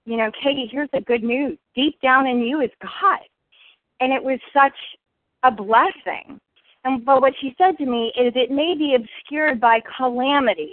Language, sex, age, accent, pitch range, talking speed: English, female, 30-49, American, 250-305 Hz, 185 wpm